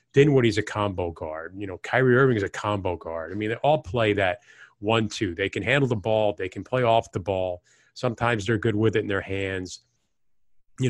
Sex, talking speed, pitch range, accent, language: male, 215 wpm, 100-130 Hz, American, English